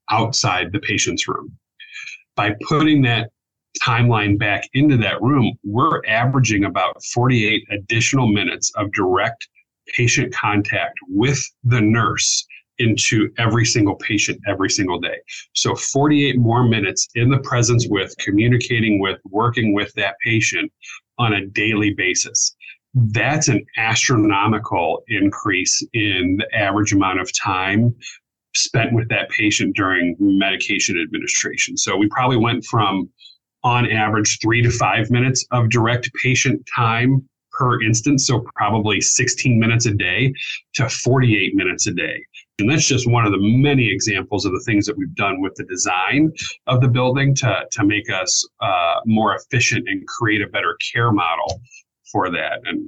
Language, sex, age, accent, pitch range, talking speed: English, male, 40-59, American, 105-130 Hz, 150 wpm